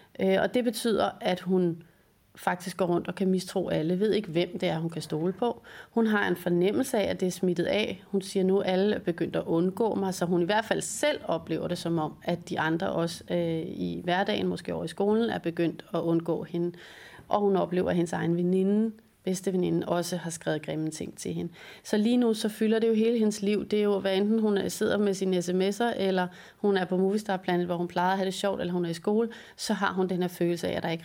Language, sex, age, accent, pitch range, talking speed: Danish, female, 30-49, native, 170-195 Hz, 250 wpm